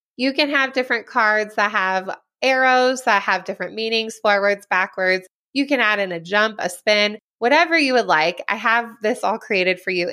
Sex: female